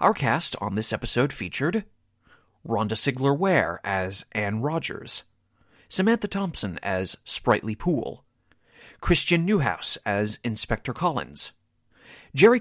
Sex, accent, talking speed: male, American, 110 wpm